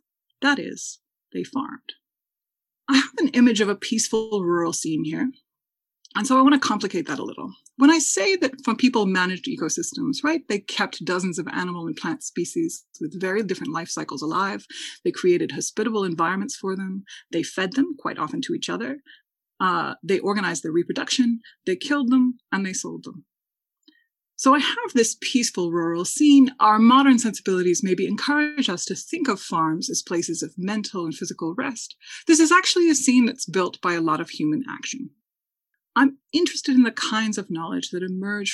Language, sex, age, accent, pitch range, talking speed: English, female, 30-49, American, 185-280 Hz, 185 wpm